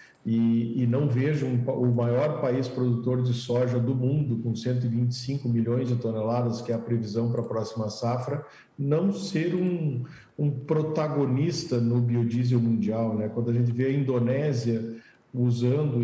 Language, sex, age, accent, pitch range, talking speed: Portuguese, male, 50-69, Brazilian, 115-135 Hz, 155 wpm